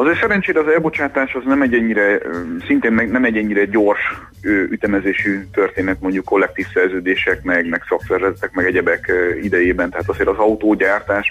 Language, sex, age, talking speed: Hungarian, male, 30-49, 140 wpm